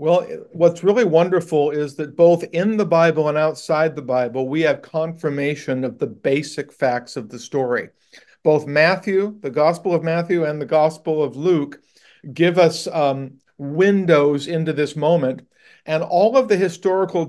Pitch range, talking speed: 145-175 Hz, 165 wpm